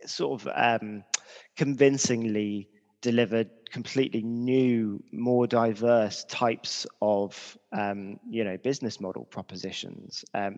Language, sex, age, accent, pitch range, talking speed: English, male, 20-39, British, 105-120 Hz, 100 wpm